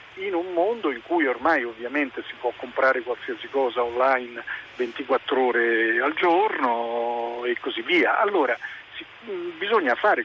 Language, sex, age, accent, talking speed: Italian, male, 50-69, native, 135 wpm